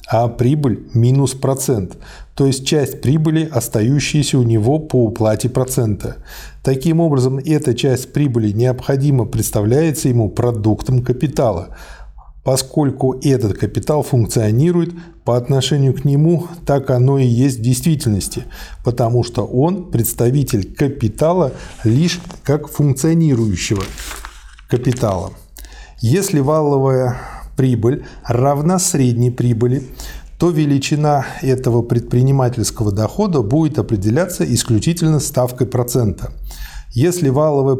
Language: Russian